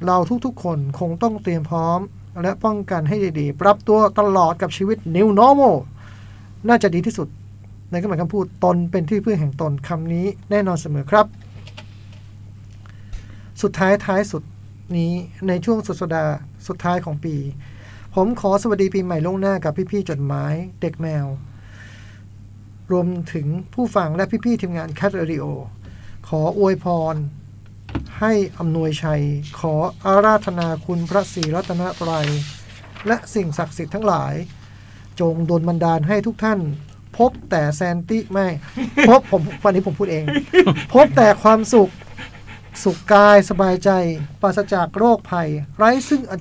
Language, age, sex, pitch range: Thai, 20-39, male, 145-205 Hz